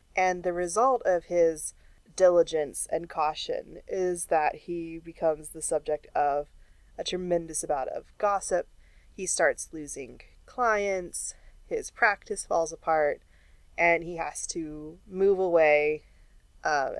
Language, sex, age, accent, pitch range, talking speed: English, female, 20-39, American, 160-190 Hz, 125 wpm